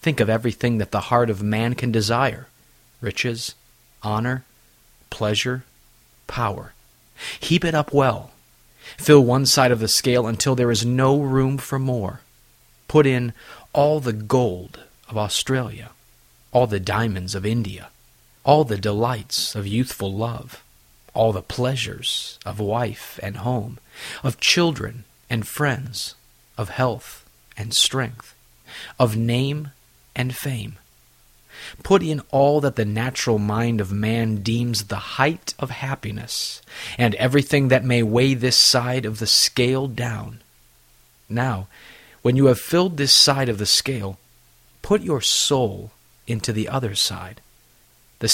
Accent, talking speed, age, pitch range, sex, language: American, 140 wpm, 40-59, 105-130 Hz, male, English